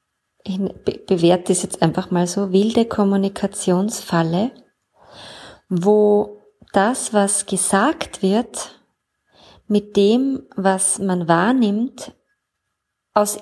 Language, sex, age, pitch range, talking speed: German, female, 30-49, 195-235 Hz, 90 wpm